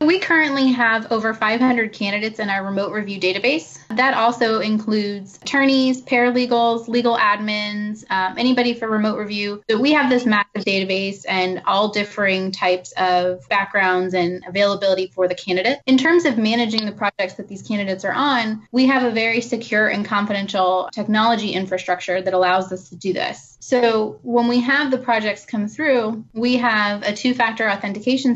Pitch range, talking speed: 195-235 Hz, 165 wpm